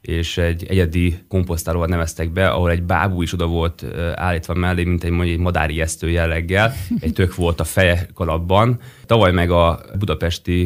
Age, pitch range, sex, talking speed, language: 20-39, 85-95 Hz, male, 175 wpm, Hungarian